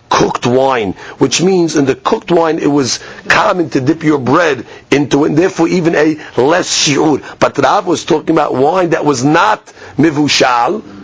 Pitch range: 140-185 Hz